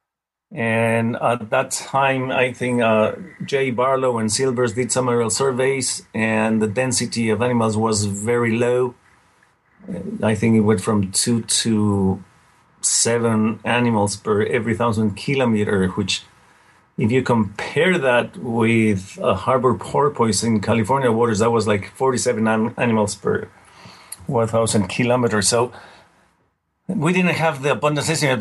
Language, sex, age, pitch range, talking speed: English, male, 40-59, 110-125 Hz, 135 wpm